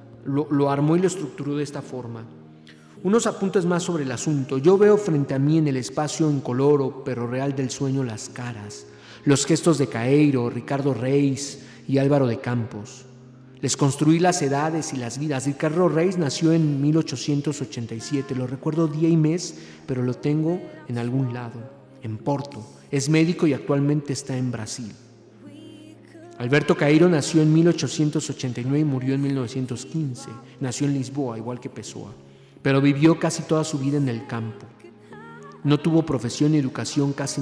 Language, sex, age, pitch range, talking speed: Spanish, male, 40-59, 125-150 Hz, 165 wpm